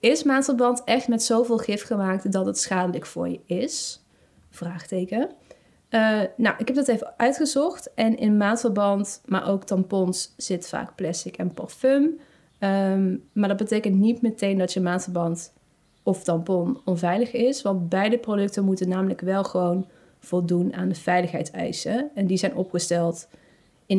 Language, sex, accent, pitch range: Dutch, female, Dutch, 185-235 Hz